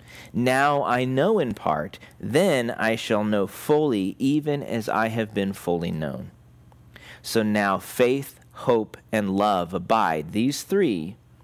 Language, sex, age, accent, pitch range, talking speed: English, male, 40-59, American, 105-135 Hz, 135 wpm